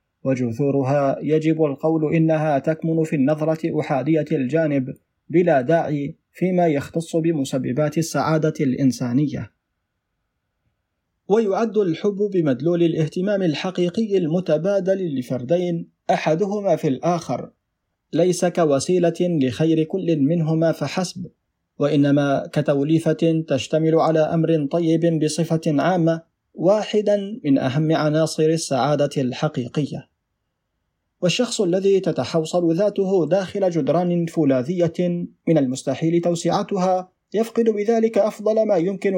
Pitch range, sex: 150-180 Hz, male